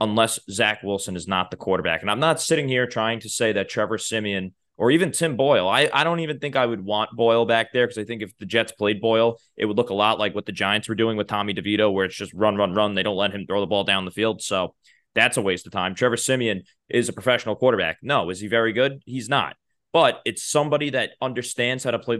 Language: English